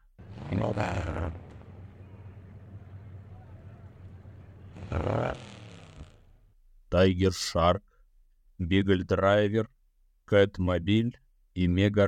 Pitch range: 95-115 Hz